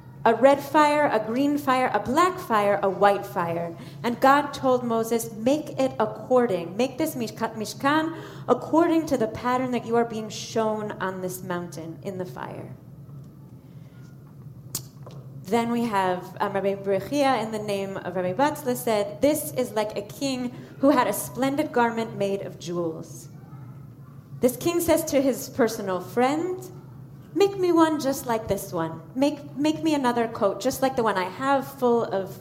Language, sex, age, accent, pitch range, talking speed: English, female, 30-49, American, 175-275 Hz, 165 wpm